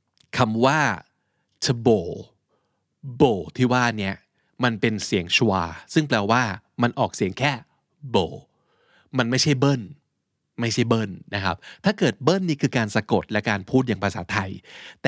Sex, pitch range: male, 105-145 Hz